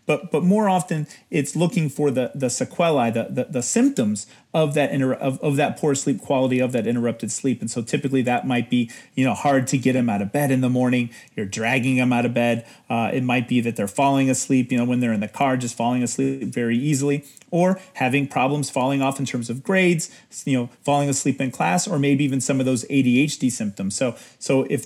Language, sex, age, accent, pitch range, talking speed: English, male, 30-49, American, 125-150 Hz, 235 wpm